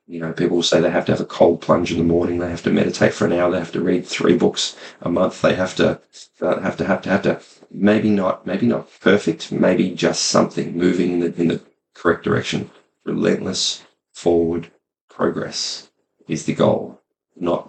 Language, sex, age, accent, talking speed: English, male, 30-49, Australian, 205 wpm